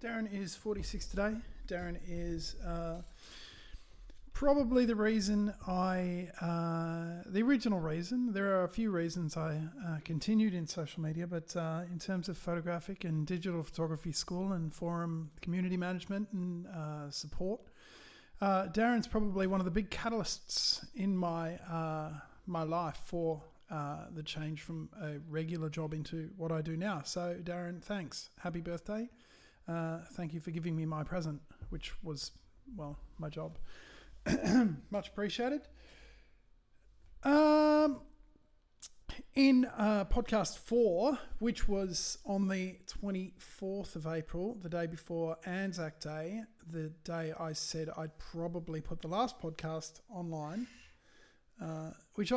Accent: Australian